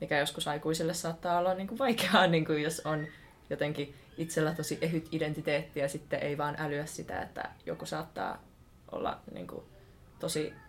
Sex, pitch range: female, 155-170 Hz